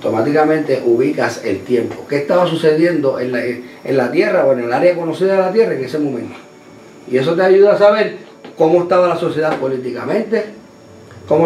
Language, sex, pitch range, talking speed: Spanish, male, 135-175 Hz, 185 wpm